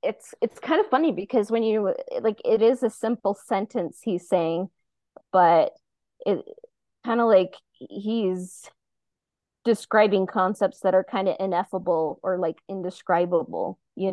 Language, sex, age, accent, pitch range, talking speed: English, female, 20-39, American, 180-215 Hz, 140 wpm